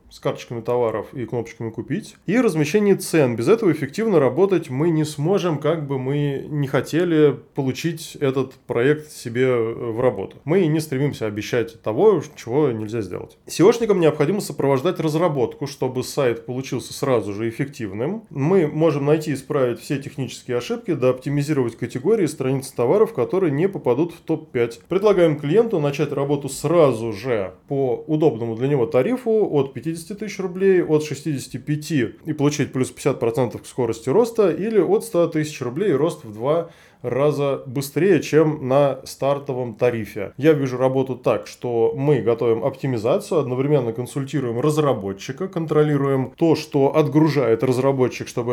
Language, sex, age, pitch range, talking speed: Russian, male, 20-39, 120-155 Hz, 145 wpm